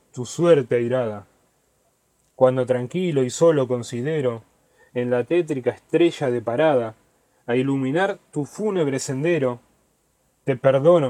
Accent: Argentinian